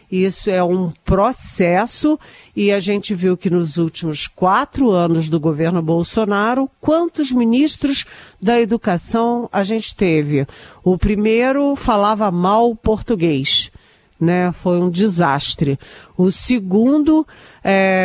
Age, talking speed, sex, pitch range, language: 50-69, 115 wpm, female, 180-240 Hz, Portuguese